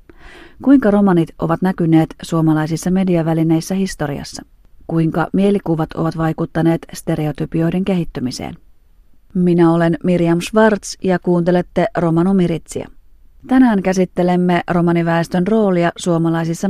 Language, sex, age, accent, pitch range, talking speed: Finnish, female, 30-49, native, 160-185 Hz, 95 wpm